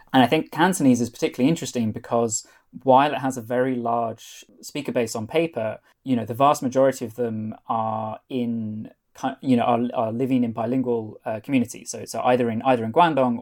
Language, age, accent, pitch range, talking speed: English, 20-39, British, 115-130 Hz, 190 wpm